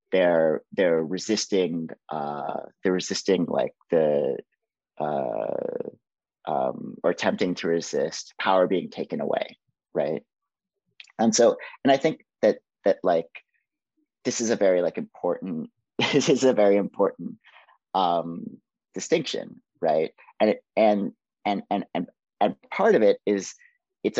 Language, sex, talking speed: English, male, 135 wpm